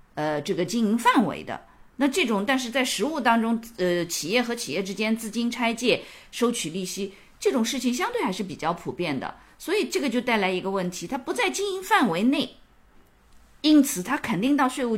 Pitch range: 185-265 Hz